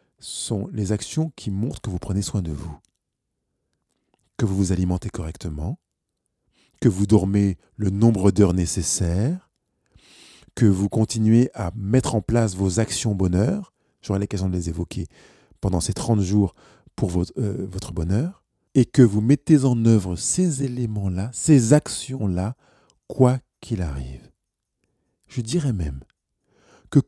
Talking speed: 140 wpm